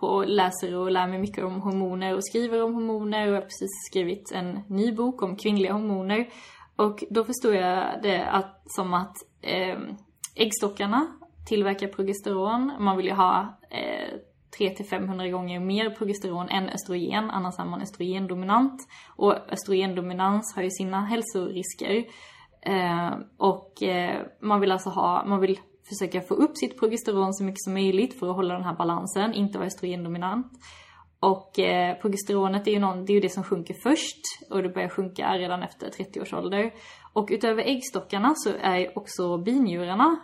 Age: 20-39